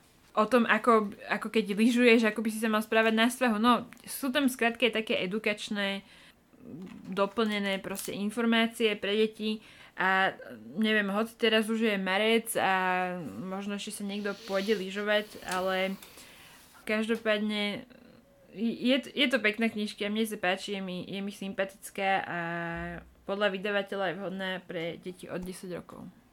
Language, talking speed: Slovak, 145 wpm